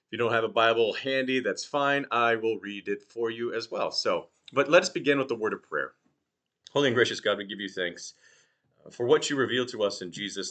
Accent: American